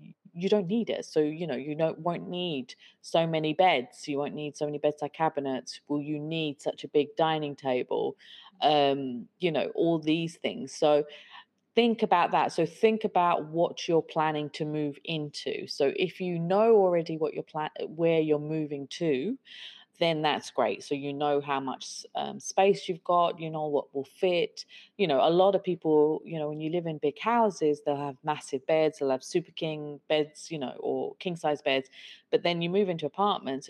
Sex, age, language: female, 30-49, English